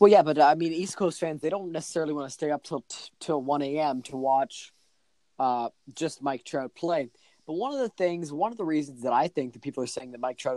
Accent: American